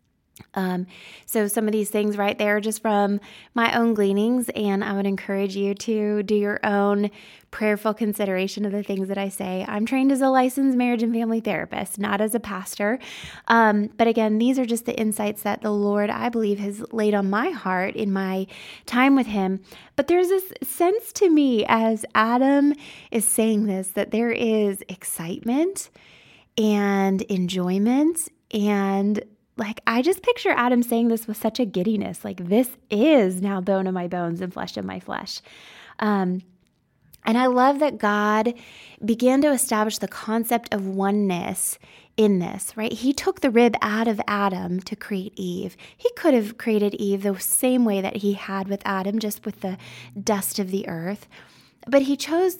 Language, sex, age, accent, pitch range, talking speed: English, female, 20-39, American, 200-235 Hz, 180 wpm